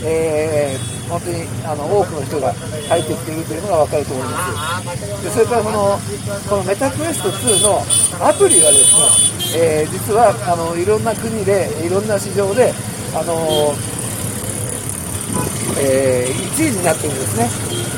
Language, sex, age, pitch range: Japanese, male, 50-69, 125-195 Hz